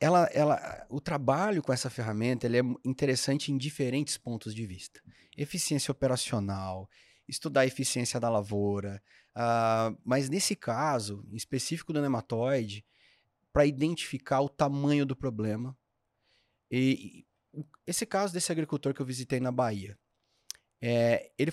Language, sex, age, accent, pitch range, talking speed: Portuguese, male, 30-49, Brazilian, 120-160 Hz, 115 wpm